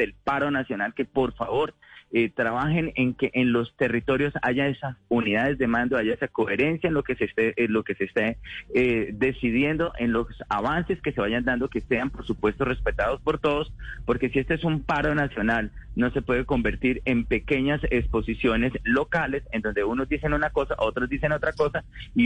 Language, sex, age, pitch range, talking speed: Spanish, male, 30-49, 110-140 Hz, 195 wpm